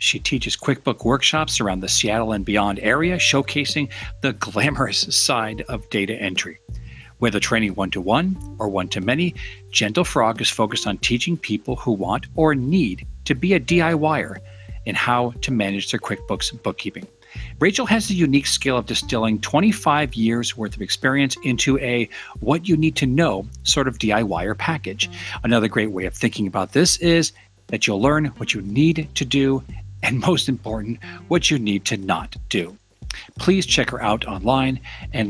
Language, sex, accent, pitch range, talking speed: English, male, American, 100-145 Hz, 160 wpm